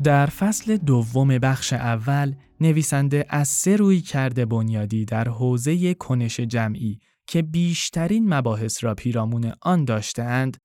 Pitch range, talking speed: 115-150 Hz, 125 wpm